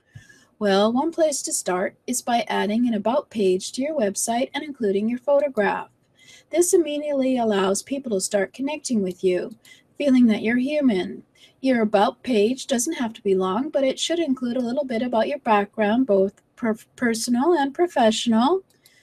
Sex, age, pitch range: female, 30-49, 205-275 Hz